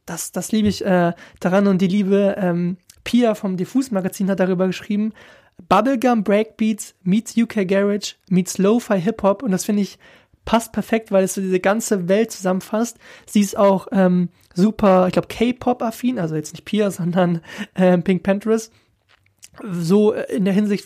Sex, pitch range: male, 180-220 Hz